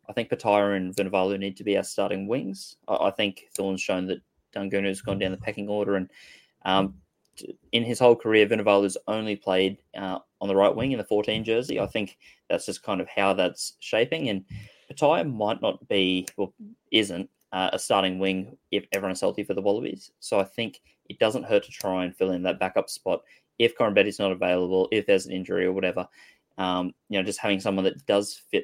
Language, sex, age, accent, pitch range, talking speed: English, male, 20-39, Australian, 95-110 Hz, 210 wpm